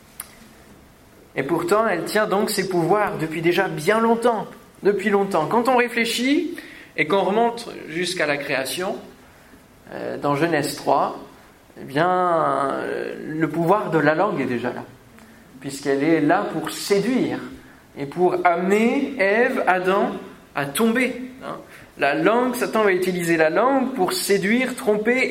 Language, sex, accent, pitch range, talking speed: French, male, French, 145-210 Hz, 140 wpm